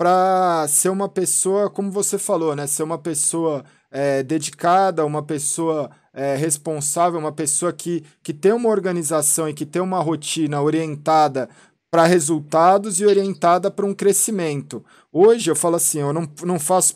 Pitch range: 155-195 Hz